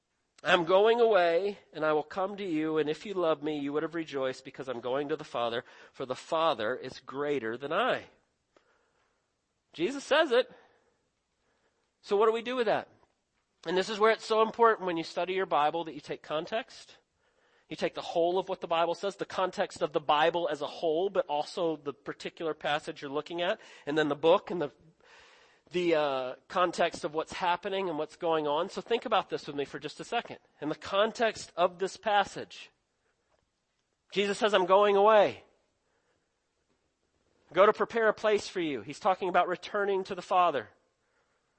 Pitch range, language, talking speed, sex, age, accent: 160-215 Hz, English, 190 wpm, male, 40-59, American